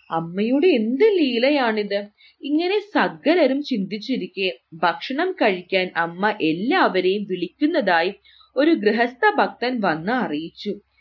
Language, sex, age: English, female, 30-49